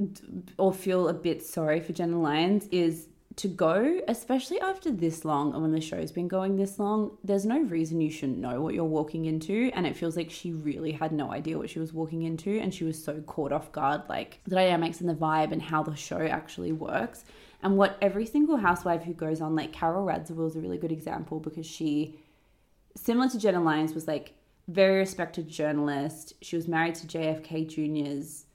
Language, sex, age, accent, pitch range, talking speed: English, female, 20-39, Australian, 155-175 Hz, 210 wpm